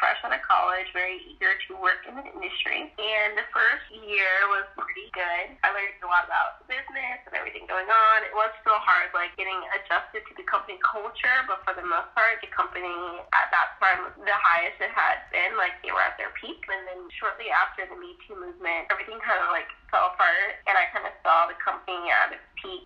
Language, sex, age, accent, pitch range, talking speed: English, female, 20-39, American, 185-250 Hz, 220 wpm